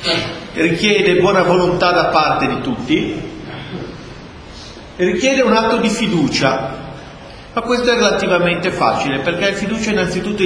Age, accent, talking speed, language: 40-59, native, 125 wpm, Italian